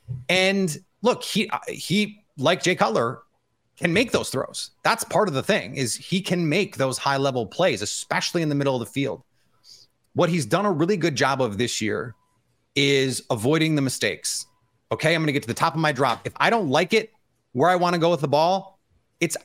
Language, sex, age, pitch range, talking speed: English, male, 30-49, 130-170 Hz, 215 wpm